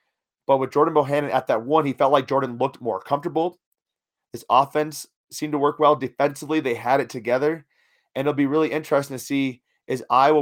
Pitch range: 125-150 Hz